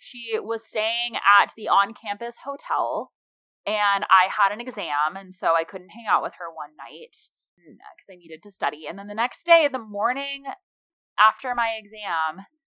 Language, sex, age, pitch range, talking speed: English, female, 20-39, 180-220 Hz, 175 wpm